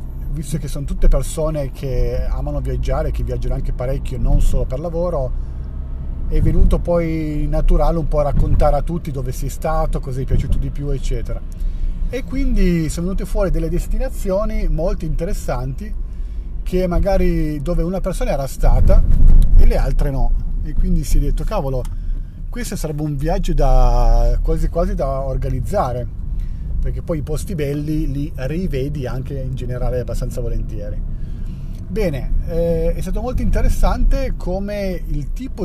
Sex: male